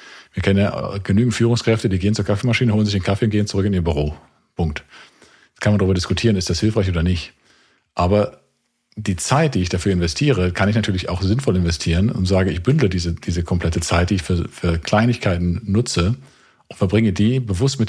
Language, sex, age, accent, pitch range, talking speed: German, male, 40-59, German, 90-110 Hz, 210 wpm